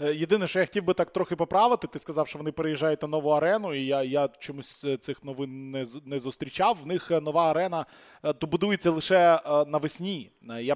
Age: 20-39